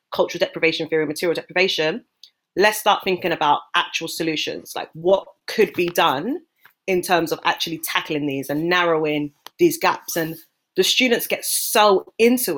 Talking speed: 155 wpm